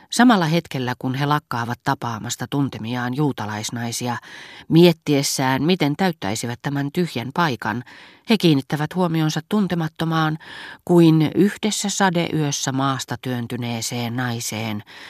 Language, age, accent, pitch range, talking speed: Finnish, 40-59, native, 125-165 Hz, 95 wpm